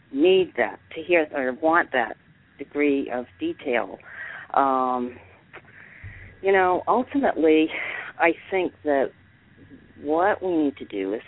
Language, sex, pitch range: English, female, 125-165 Hz